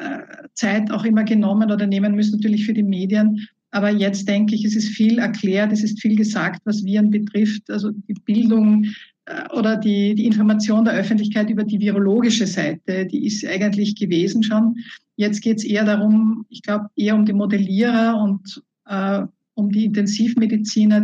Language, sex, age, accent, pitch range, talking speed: German, female, 50-69, Austrian, 200-220 Hz, 170 wpm